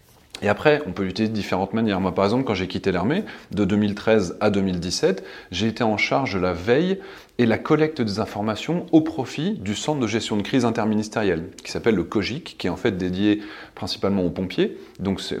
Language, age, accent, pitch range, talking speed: French, 40-59, French, 95-125 Hz, 210 wpm